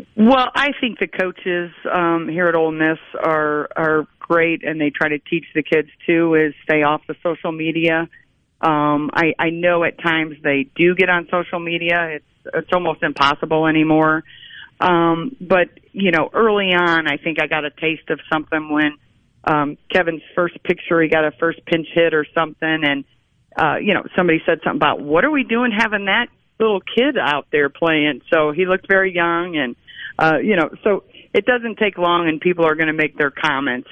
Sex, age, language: female, 40-59, English